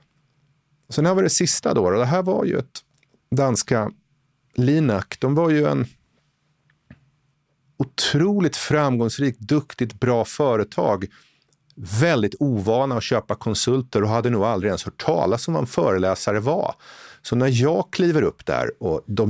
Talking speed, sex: 145 wpm, male